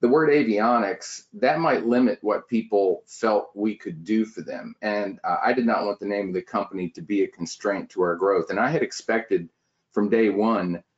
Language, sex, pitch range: English, male, 100-125 Hz